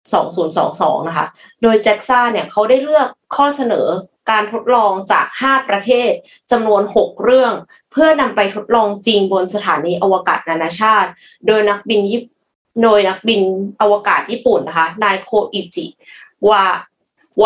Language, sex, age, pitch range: Thai, female, 20-39, 185-230 Hz